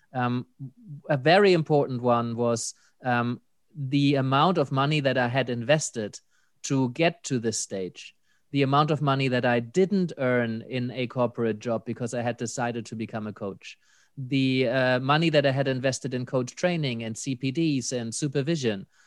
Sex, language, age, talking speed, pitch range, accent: male, English, 30-49, 170 wpm, 125-160 Hz, German